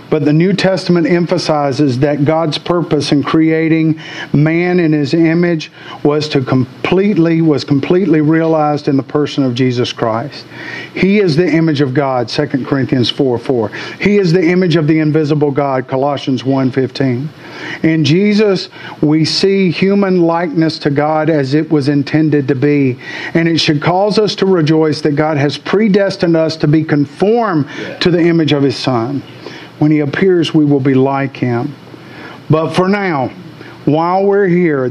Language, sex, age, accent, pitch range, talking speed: English, male, 50-69, American, 145-175 Hz, 165 wpm